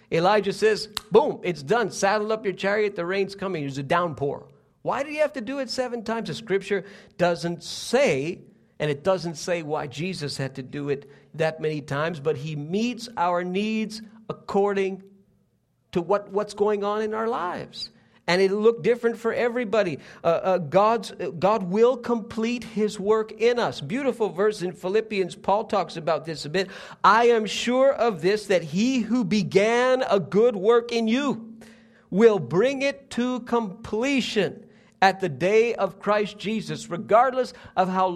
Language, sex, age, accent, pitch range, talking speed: English, male, 50-69, American, 185-230 Hz, 170 wpm